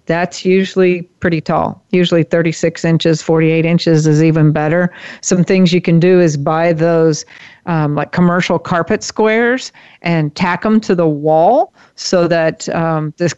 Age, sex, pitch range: 40-59, female, 165-190 Hz